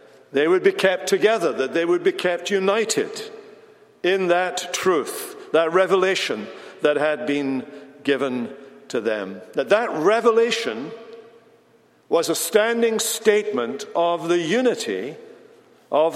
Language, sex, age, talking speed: English, male, 60-79, 125 wpm